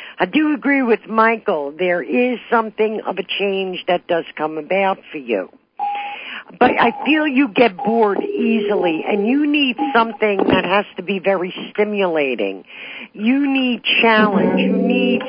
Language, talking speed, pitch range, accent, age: English, 155 wpm, 185-235 Hz, American, 50-69